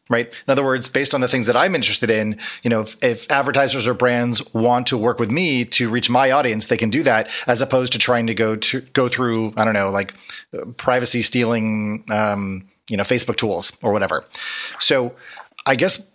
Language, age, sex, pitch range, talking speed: English, 30-49, male, 115-130 Hz, 215 wpm